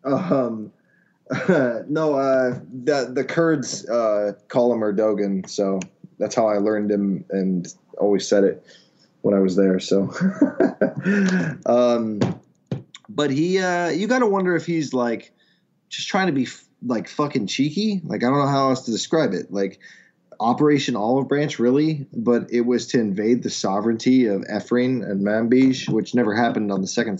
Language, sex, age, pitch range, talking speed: English, male, 20-39, 105-140 Hz, 165 wpm